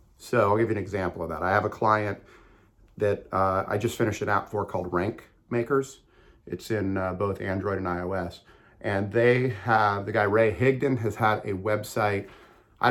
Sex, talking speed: male, 195 wpm